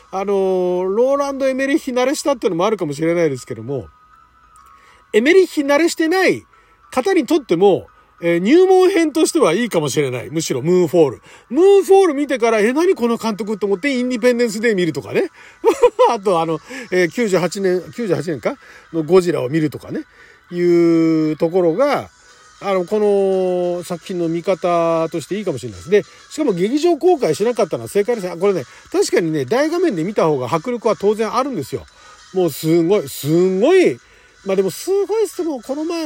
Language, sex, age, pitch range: Japanese, male, 40-59, 170-285 Hz